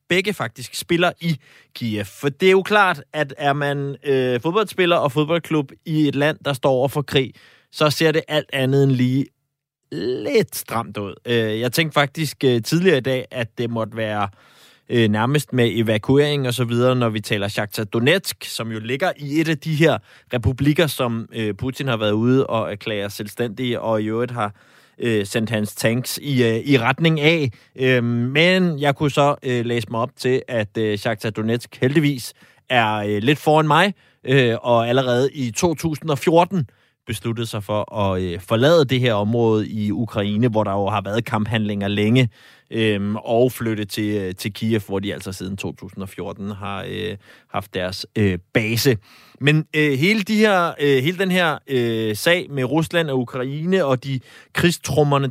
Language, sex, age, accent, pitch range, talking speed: Danish, male, 20-39, native, 110-150 Hz, 175 wpm